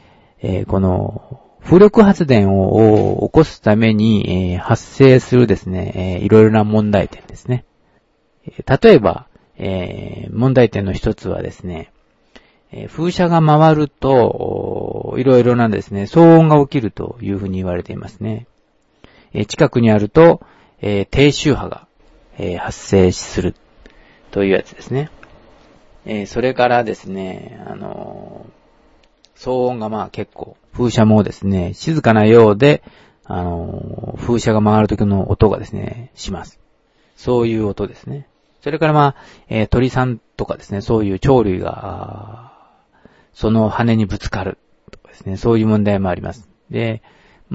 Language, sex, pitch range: Japanese, male, 100-125 Hz